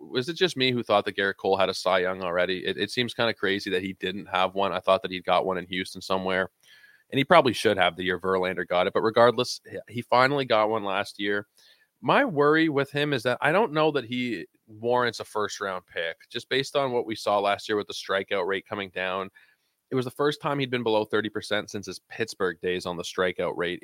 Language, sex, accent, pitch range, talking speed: English, male, American, 95-120 Hz, 245 wpm